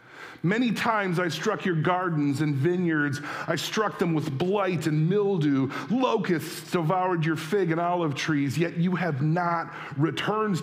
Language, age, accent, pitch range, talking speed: English, 40-59, American, 140-185 Hz, 150 wpm